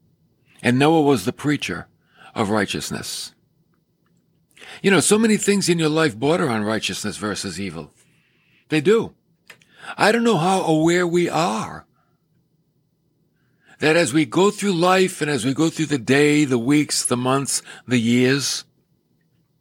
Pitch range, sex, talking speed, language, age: 140-175 Hz, male, 145 wpm, English, 60-79